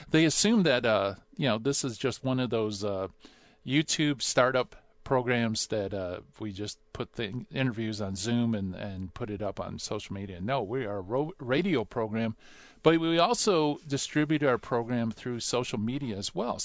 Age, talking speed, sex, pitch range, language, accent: 50-69, 185 wpm, male, 105-145 Hz, English, American